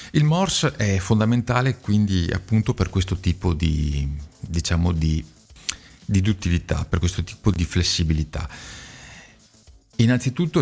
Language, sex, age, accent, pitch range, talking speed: Italian, male, 40-59, native, 80-110 Hz, 105 wpm